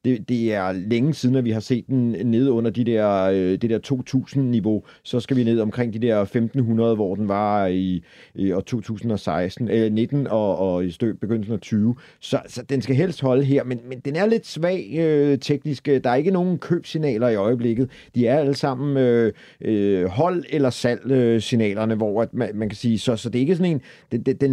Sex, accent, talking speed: male, native, 210 wpm